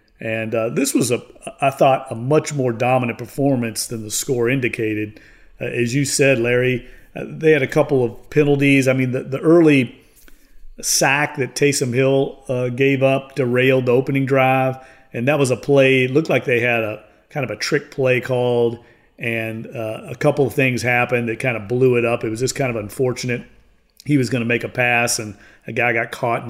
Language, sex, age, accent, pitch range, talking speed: English, male, 40-59, American, 115-135 Hz, 210 wpm